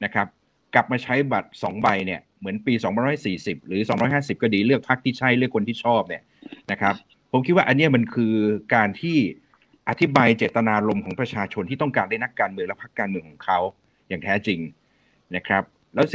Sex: male